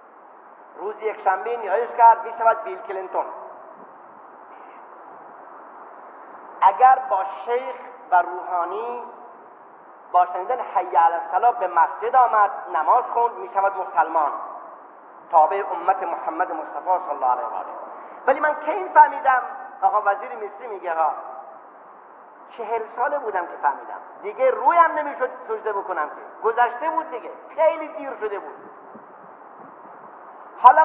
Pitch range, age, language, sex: 225-300 Hz, 40-59, Persian, male